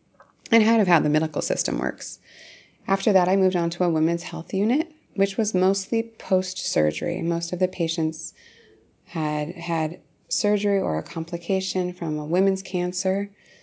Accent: American